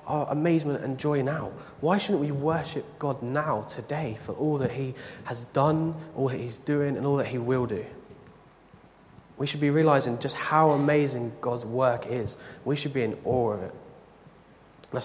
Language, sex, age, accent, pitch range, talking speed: English, male, 20-39, British, 125-150 Hz, 185 wpm